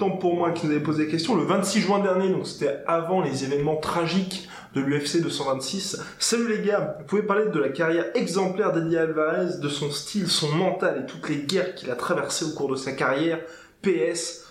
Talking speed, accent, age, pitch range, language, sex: 210 wpm, French, 20-39, 145-190 Hz, French, male